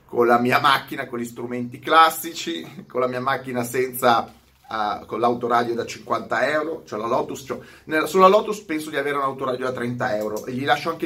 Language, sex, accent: Italian, male, native